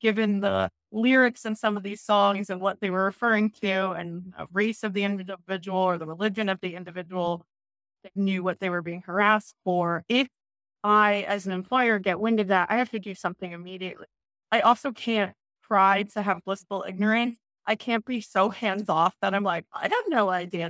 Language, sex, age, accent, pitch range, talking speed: English, female, 20-39, American, 180-215 Hz, 195 wpm